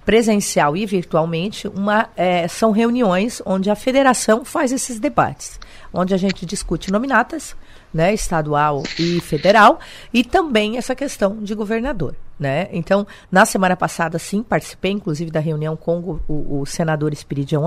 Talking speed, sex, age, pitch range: 145 wpm, female, 40-59, 175-235 Hz